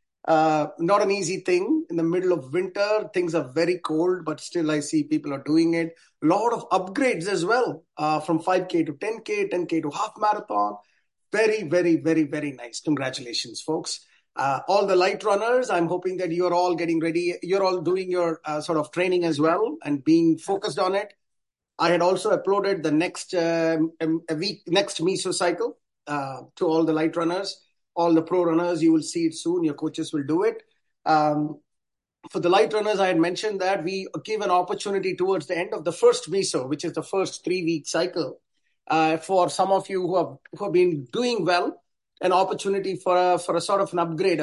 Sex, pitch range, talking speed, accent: male, 155-190 Hz, 200 wpm, Indian